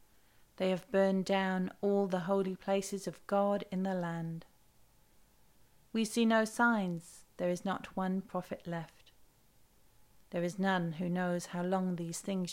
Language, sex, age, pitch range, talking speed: English, female, 40-59, 165-200 Hz, 155 wpm